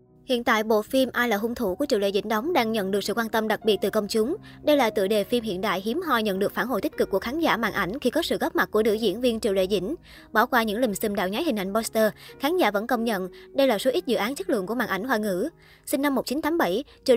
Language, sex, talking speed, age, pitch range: Vietnamese, male, 310 wpm, 20-39, 210-260 Hz